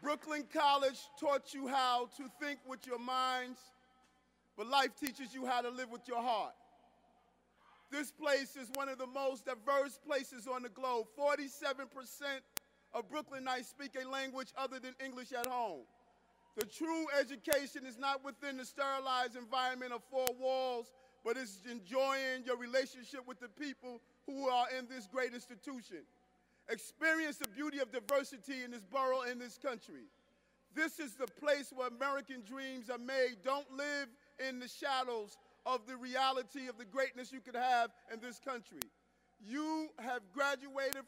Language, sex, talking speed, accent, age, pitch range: English, male, 160 wpm, American, 40-59, 250-275 Hz